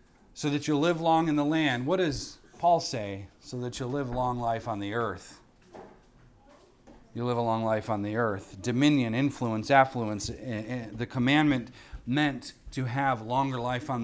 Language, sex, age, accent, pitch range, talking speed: English, male, 40-59, American, 120-155 Hz, 170 wpm